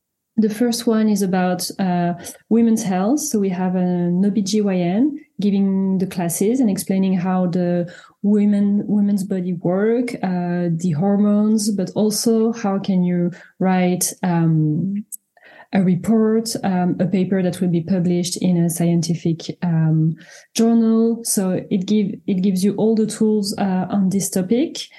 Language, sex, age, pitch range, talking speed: English, female, 30-49, 180-215 Hz, 150 wpm